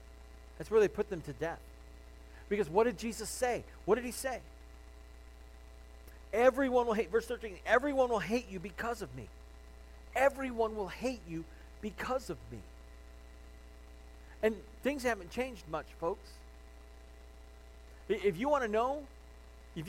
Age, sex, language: 40-59, male, English